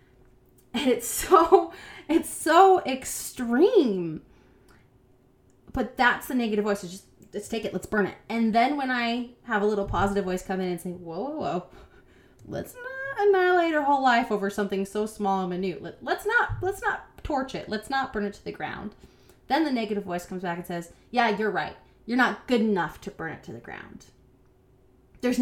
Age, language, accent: 20-39, English, American